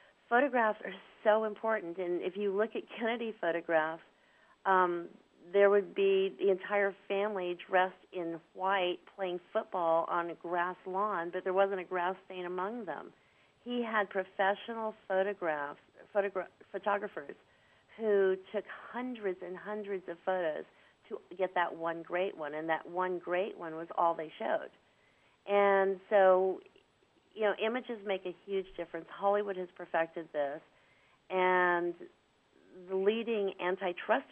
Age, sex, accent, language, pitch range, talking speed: 50-69, female, American, English, 175-200 Hz, 140 wpm